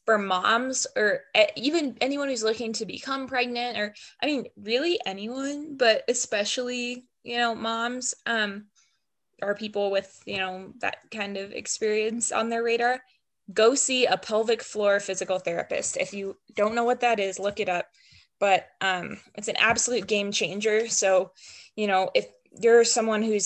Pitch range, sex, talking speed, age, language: 195-245 Hz, female, 165 wpm, 10-29, English